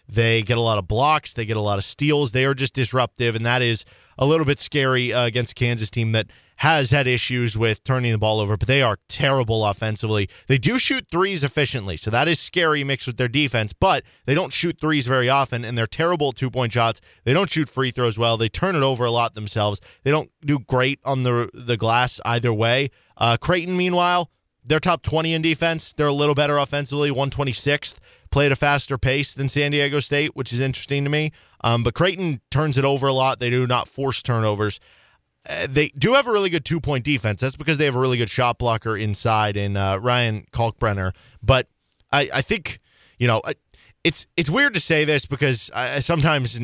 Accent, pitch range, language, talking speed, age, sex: American, 115-145 Hz, English, 220 wpm, 20-39, male